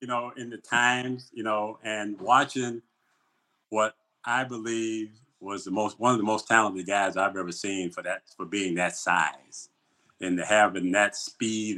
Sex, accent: male, American